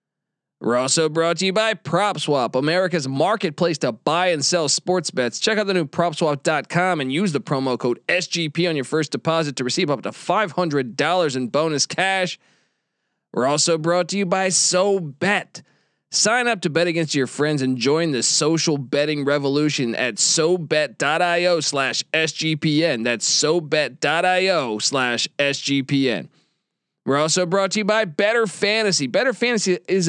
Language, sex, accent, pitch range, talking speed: English, male, American, 145-185 Hz, 145 wpm